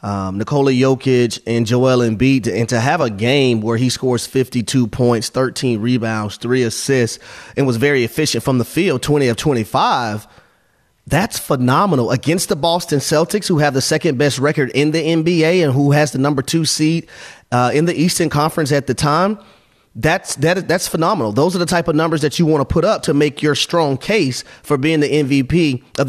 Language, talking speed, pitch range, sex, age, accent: English, 195 wpm, 125-155 Hz, male, 30-49, American